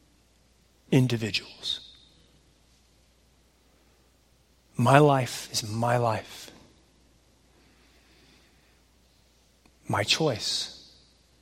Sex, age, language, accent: male, 40-59, English, American